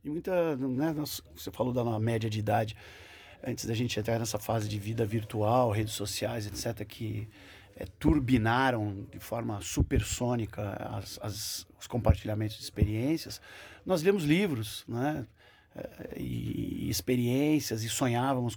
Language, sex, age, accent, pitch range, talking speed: Portuguese, male, 50-69, Brazilian, 110-150 Hz, 140 wpm